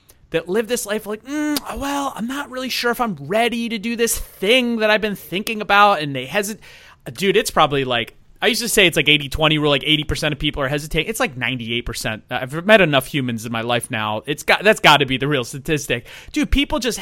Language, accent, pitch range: English, American, 135-215 Hz